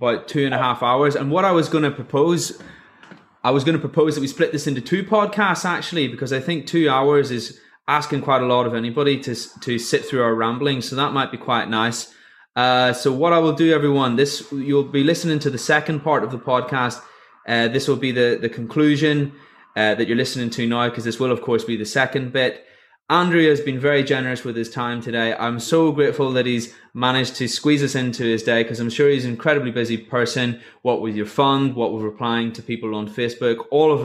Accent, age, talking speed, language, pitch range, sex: British, 20-39, 235 wpm, English, 125-155 Hz, male